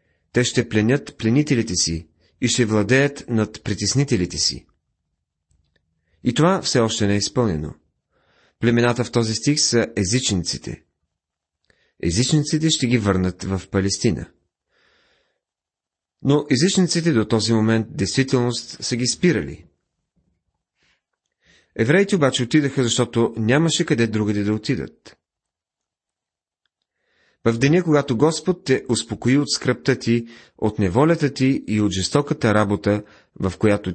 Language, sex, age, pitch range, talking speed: Bulgarian, male, 40-59, 95-130 Hz, 115 wpm